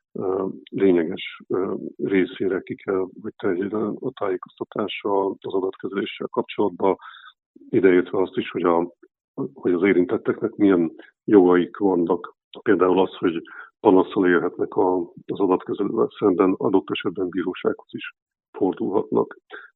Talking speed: 105 wpm